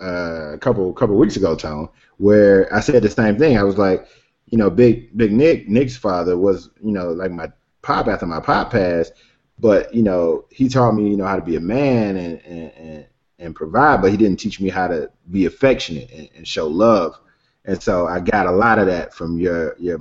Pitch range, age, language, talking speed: 90-110 Hz, 20-39, English, 220 wpm